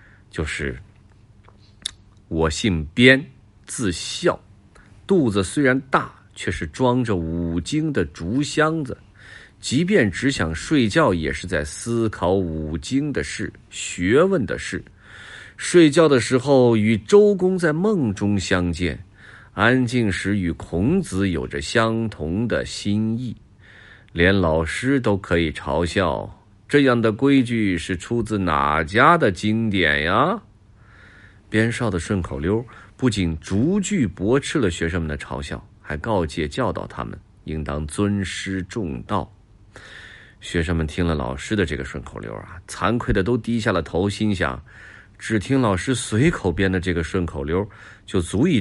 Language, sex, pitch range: Chinese, male, 90-115 Hz